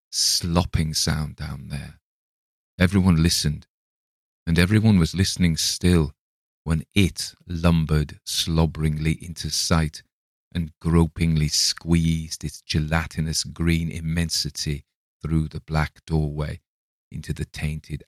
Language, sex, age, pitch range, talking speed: English, male, 40-59, 80-95 Hz, 105 wpm